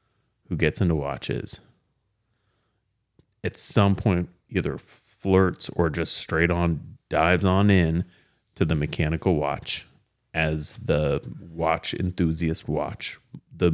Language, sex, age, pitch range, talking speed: English, male, 30-49, 80-100 Hz, 115 wpm